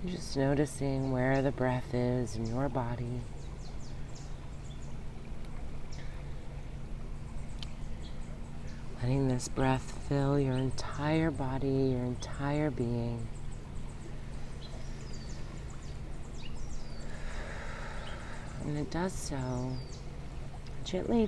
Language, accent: English, American